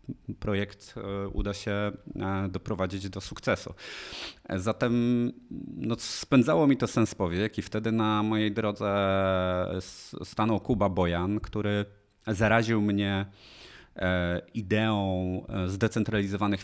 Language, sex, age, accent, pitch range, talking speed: Polish, male, 30-49, native, 95-120 Hz, 95 wpm